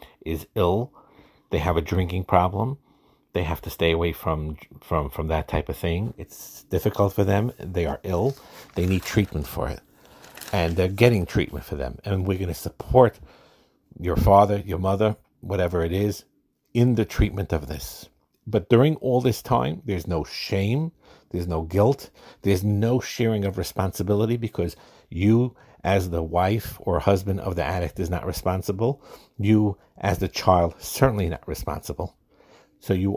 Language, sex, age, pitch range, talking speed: English, male, 50-69, 85-105 Hz, 165 wpm